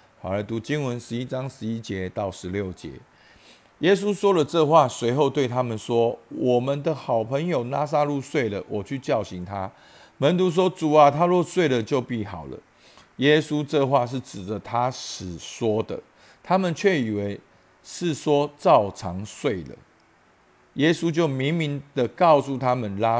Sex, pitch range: male, 100-150 Hz